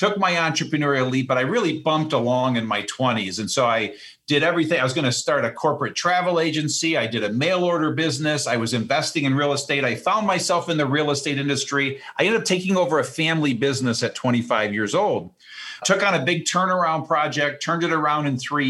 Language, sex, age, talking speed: English, male, 50-69, 220 wpm